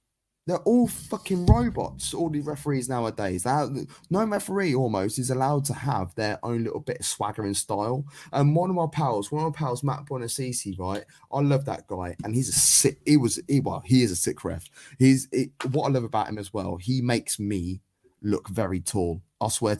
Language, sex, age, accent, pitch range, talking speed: English, male, 20-39, British, 105-150 Hz, 200 wpm